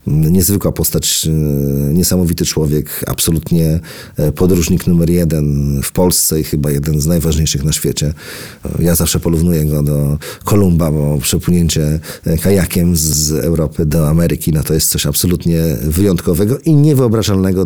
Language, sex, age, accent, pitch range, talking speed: Polish, male, 40-59, native, 80-95 Hz, 130 wpm